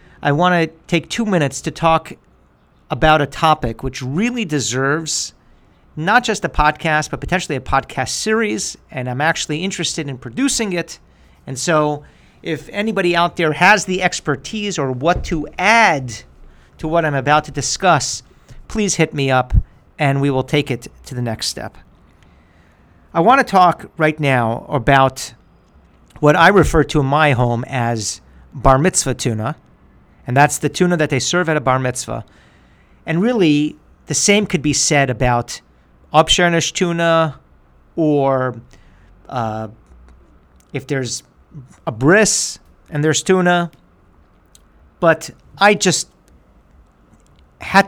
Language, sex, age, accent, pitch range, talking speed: English, male, 50-69, American, 120-165 Hz, 145 wpm